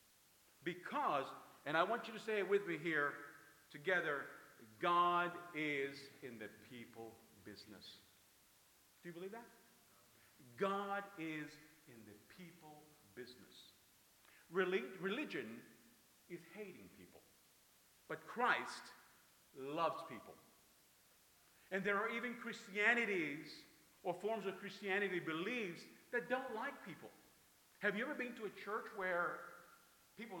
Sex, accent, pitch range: male, American, 150-205 Hz